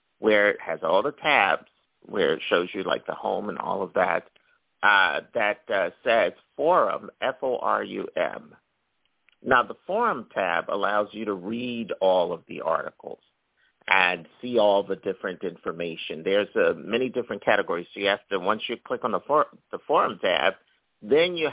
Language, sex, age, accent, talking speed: English, male, 50-69, American, 180 wpm